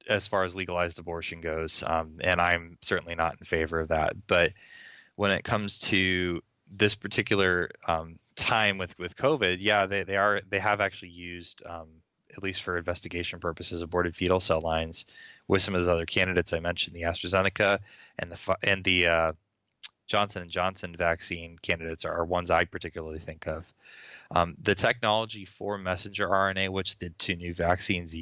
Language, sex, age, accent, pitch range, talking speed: English, male, 20-39, American, 85-100 Hz, 175 wpm